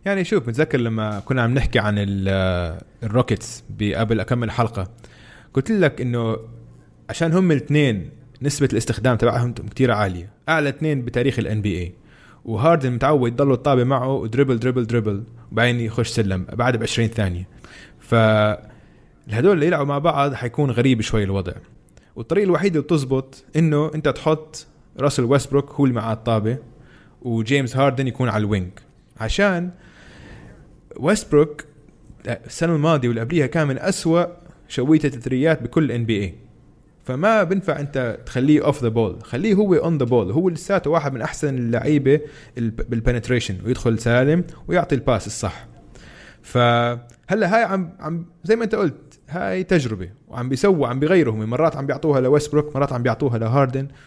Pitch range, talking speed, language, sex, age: 115-150 Hz, 145 wpm, Arabic, male, 20-39